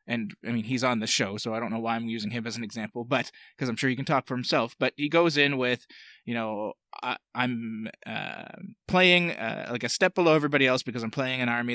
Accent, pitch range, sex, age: American, 120-145 Hz, male, 20-39